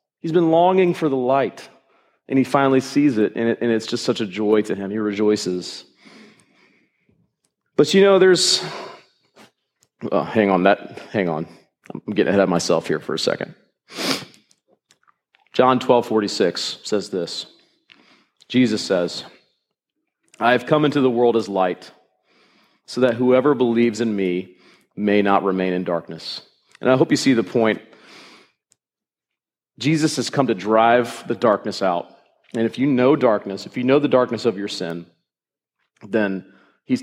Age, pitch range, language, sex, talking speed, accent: 40-59, 110-135 Hz, English, male, 160 wpm, American